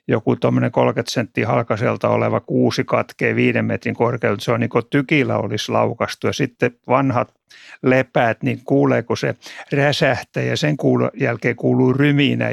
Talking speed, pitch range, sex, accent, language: 145 wpm, 115-140 Hz, male, native, Finnish